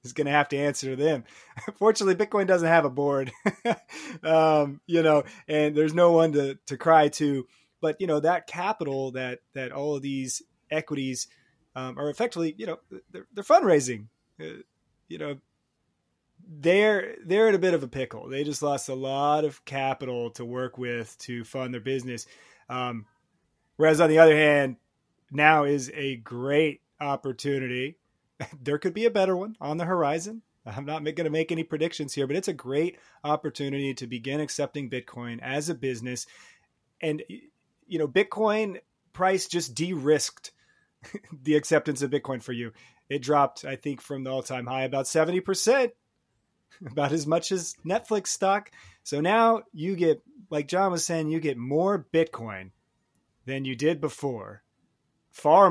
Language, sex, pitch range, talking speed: English, male, 130-165 Hz, 165 wpm